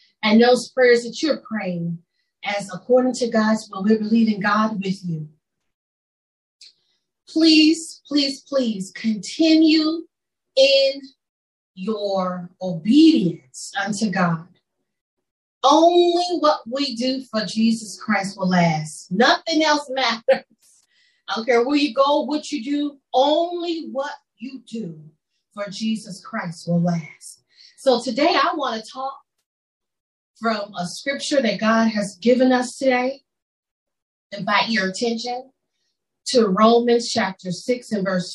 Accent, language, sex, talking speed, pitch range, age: American, English, female, 125 wpm, 200-265 Hz, 40-59